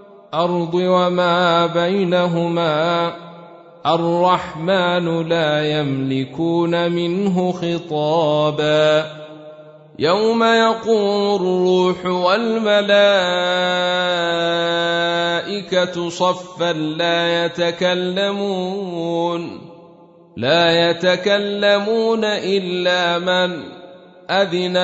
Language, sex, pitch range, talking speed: Arabic, male, 170-185 Hz, 50 wpm